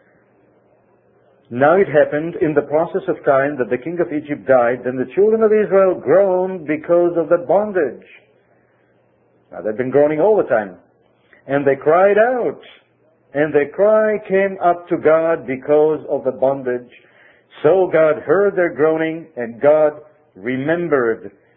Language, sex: English, male